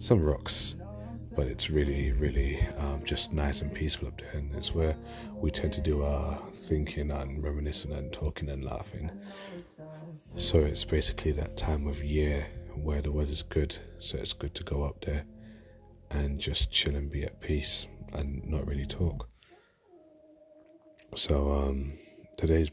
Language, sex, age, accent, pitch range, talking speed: English, male, 30-49, British, 70-95 Hz, 160 wpm